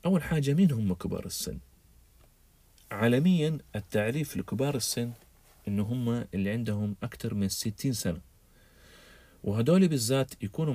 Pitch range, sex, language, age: 95-125 Hz, male, Arabic, 40-59